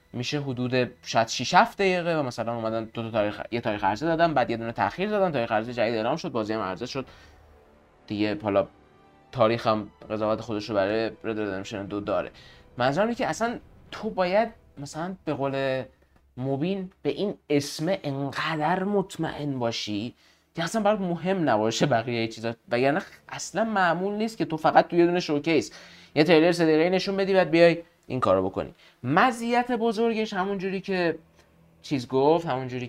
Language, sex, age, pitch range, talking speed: Persian, male, 20-39, 110-170 Hz, 160 wpm